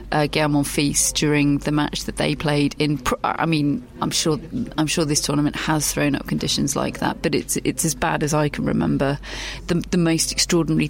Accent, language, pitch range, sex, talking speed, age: British, English, 145-165 Hz, female, 215 wpm, 30-49